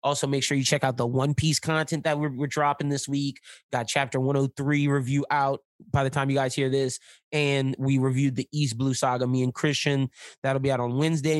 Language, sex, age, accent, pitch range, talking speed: English, male, 20-39, American, 145-190 Hz, 225 wpm